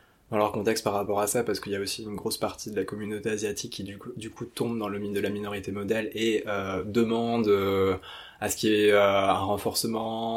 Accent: French